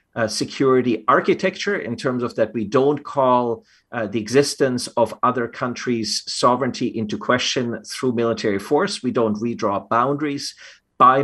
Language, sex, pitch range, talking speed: English, male, 115-145 Hz, 145 wpm